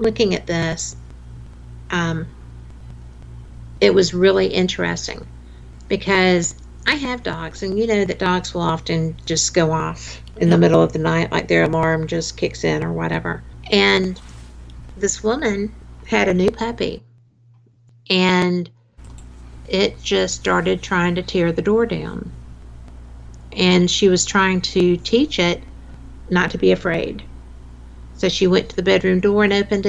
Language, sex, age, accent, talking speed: English, female, 50-69, American, 145 wpm